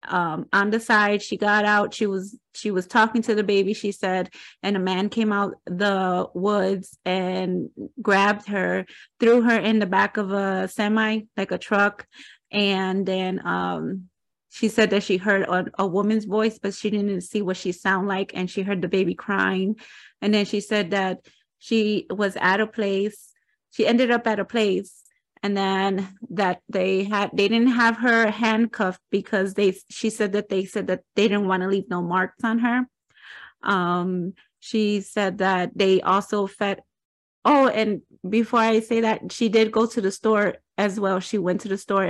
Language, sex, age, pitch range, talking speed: English, female, 30-49, 190-220 Hz, 190 wpm